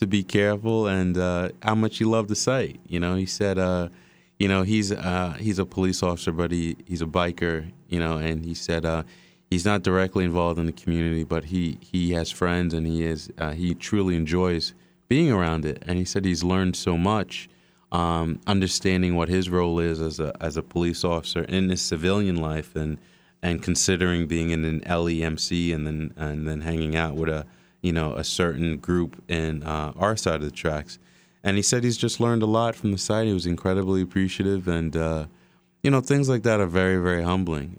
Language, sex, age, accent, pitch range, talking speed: English, male, 30-49, American, 80-95 Hz, 210 wpm